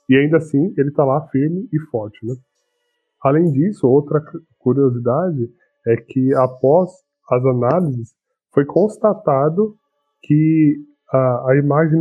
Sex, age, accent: male, 20-39, Brazilian